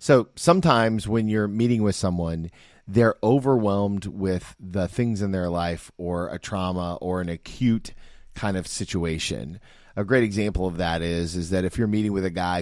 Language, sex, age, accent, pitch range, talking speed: English, male, 30-49, American, 90-120 Hz, 180 wpm